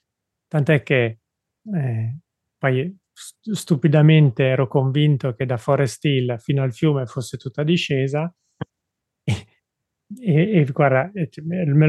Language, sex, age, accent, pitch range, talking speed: Italian, male, 30-49, native, 130-160 Hz, 105 wpm